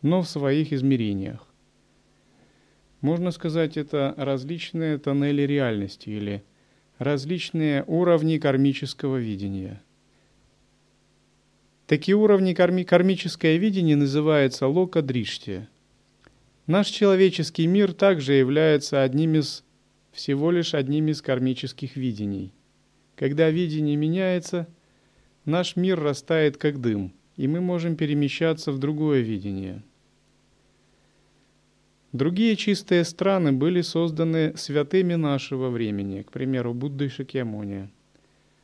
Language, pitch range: Russian, 130-165 Hz